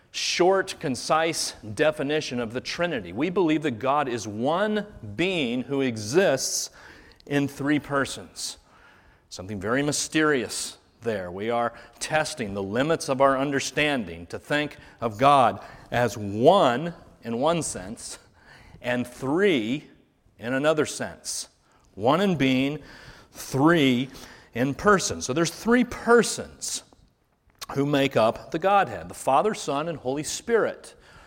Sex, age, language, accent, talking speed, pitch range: male, 40-59, English, American, 125 wpm, 125-170 Hz